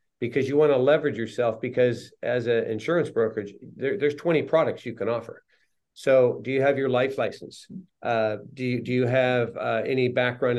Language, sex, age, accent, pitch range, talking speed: English, male, 50-69, American, 125-155 Hz, 180 wpm